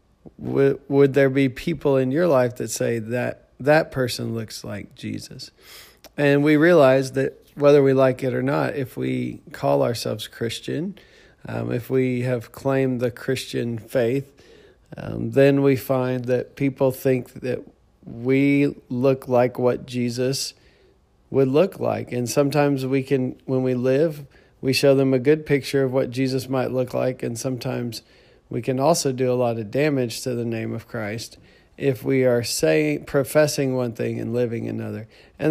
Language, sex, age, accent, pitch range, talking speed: English, male, 40-59, American, 120-140 Hz, 165 wpm